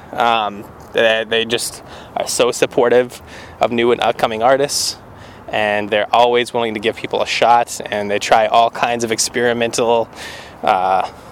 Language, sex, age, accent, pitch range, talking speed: English, male, 20-39, American, 105-120 Hz, 160 wpm